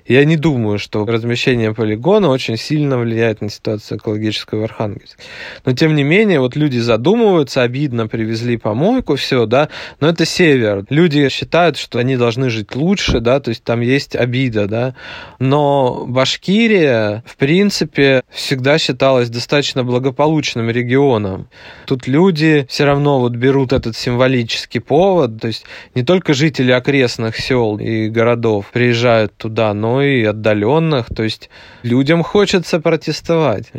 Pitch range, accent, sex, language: 115-140 Hz, native, male, Russian